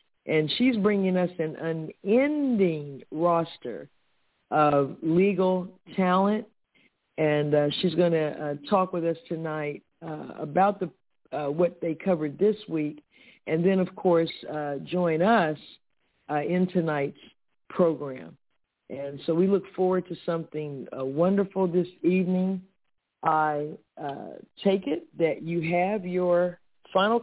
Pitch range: 155-195 Hz